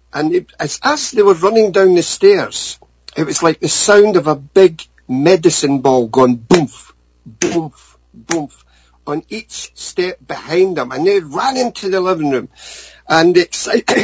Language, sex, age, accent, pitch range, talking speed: English, male, 50-69, British, 140-205 Hz, 155 wpm